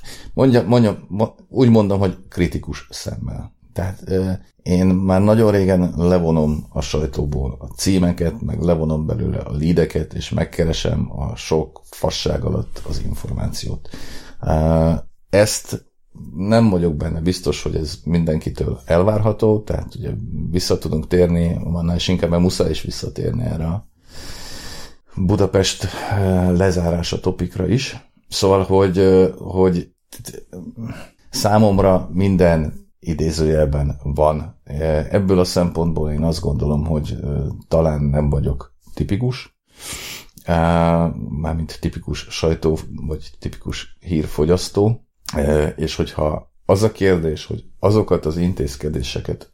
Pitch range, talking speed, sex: 80-95 Hz, 105 wpm, male